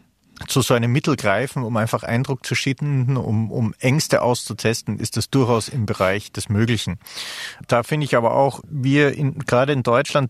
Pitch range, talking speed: 110-135 Hz, 180 wpm